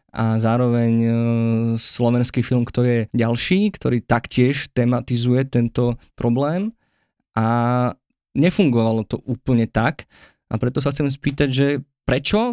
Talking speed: 120 wpm